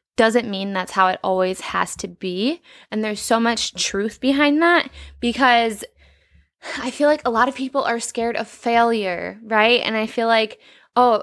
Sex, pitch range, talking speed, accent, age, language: female, 200-245 Hz, 180 wpm, American, 10-29, English